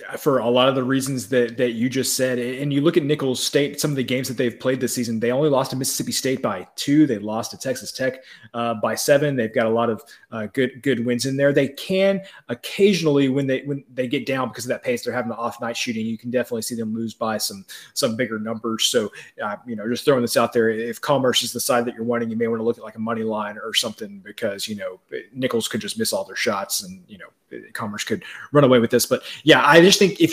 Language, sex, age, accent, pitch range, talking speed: English, male, 30-49, American, 115-140 Hz, 270 wpm